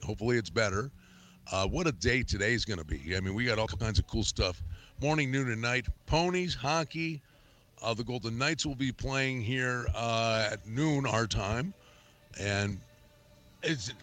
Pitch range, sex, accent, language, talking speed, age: 105-140 Hz, male, American, English, 175 wpm, 50-69